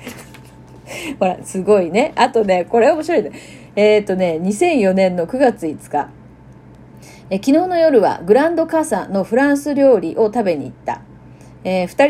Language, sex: Japanese, female